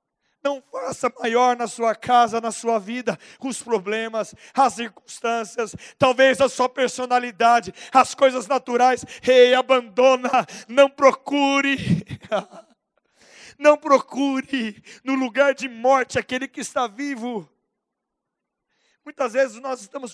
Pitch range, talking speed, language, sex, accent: 185-250 Hz, 115 wpm, Portuguese, male, Brazilian